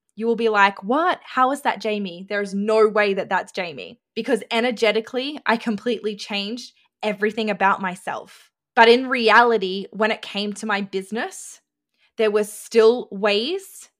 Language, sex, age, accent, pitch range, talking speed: English, female, 10-29, Australian, 195-225 Hz, 160 wpm